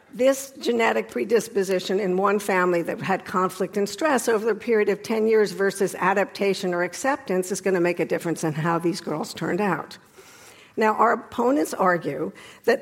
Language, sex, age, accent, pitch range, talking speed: English, female, 60-79, American, 185-235 Hz, 180 wpm